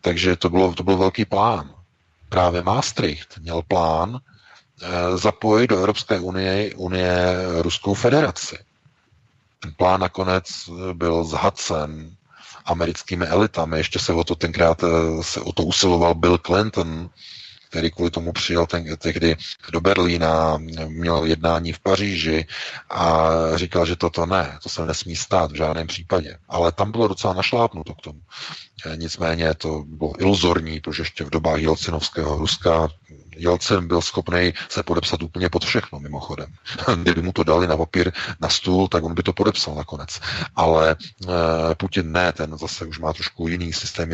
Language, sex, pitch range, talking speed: Czech, male, 80-95 Hz, 150 wpm